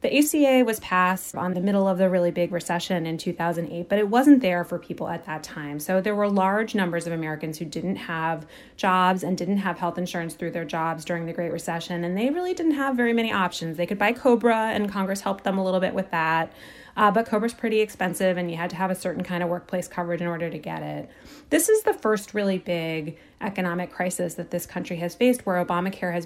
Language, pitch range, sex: English, 170-205 Hz, female